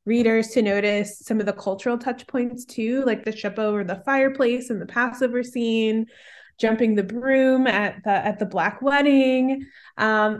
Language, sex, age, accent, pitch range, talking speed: English, female, 20-39, American, 205-260 Hz, 175 wpm